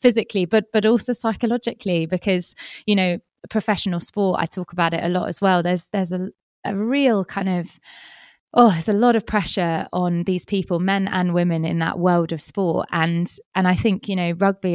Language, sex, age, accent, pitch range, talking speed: English, female, 20-39, British, 175-200 Hz, 200 wpm